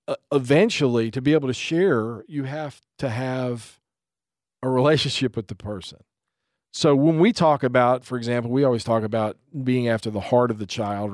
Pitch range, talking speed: 105-130 Hz, 180 wpm